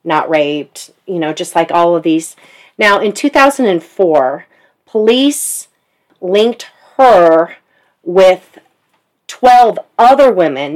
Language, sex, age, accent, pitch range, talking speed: English, female, 40-59, American, 170-215 Hz, 105 wpm